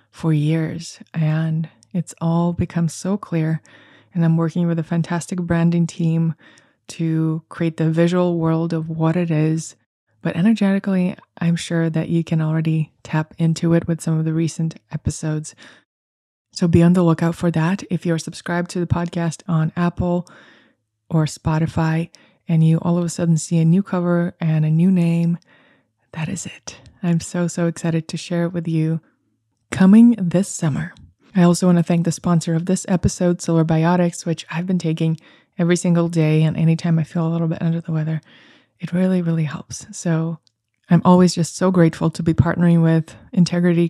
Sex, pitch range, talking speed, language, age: female, 160-175 Hz, 180 wpm, English, 20-39